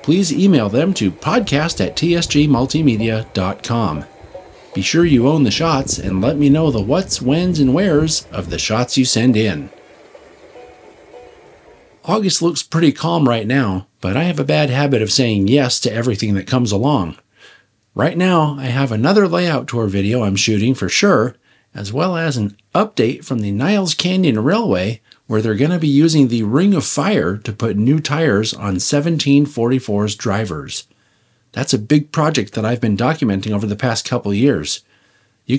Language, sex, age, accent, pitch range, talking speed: English, male, 40-59, American, 110-155 Hz, 170 wpm